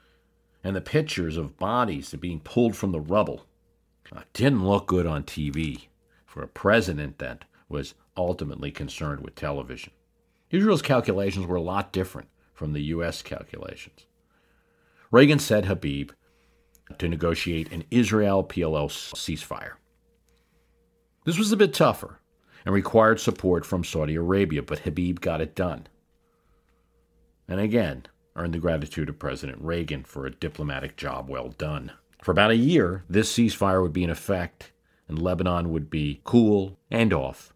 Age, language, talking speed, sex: 50-69, English, 145 wpm, male